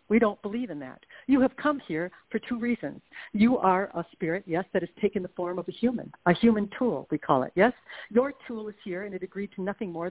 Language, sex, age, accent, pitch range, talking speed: English, female, 60-79, American, 180-230 Hz, 250 wpm